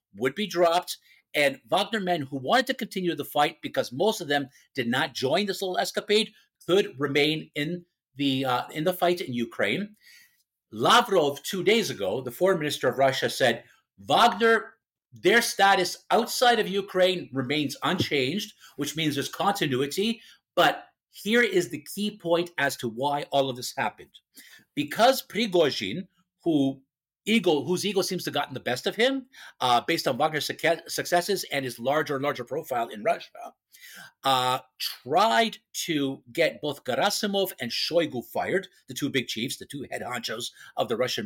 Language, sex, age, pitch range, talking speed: English, male, 50-69, 140-205 Hz, 165 wpm